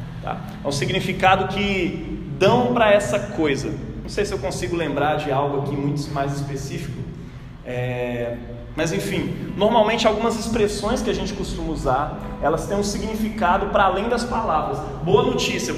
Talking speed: 160 wpm